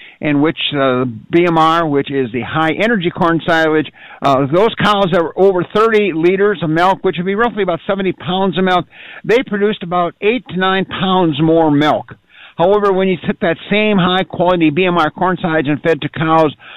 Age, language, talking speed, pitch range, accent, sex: 50-69, English, 185 wpm, 150-190 Hz, American, male